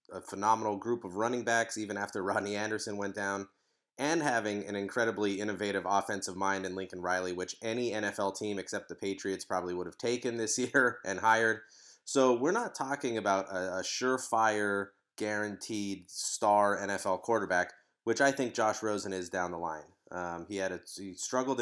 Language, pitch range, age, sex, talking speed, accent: English, 95-115 Hz, 30-49, male, 170 wpm, American